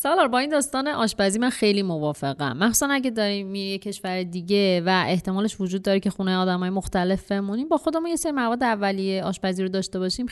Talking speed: 190 wpm